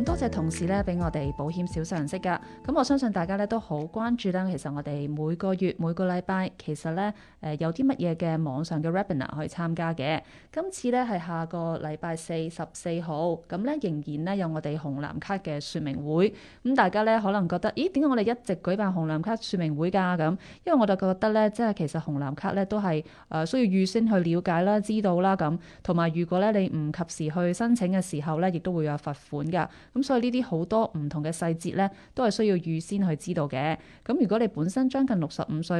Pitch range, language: 160-210 Hz, Chinese